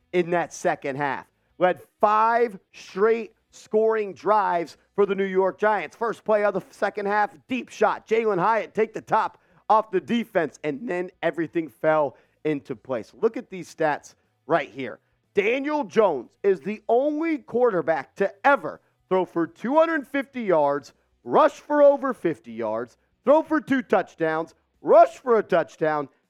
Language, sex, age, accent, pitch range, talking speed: English, male, 40-59, American, 150-235 Hz, 155 wpm